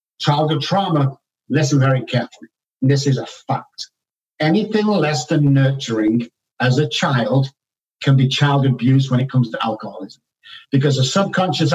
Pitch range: 135-165 Hz